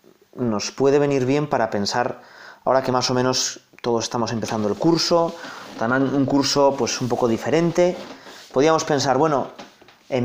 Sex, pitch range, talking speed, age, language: male, 125-160 Hz, 150 wpm, 30-49, Spanish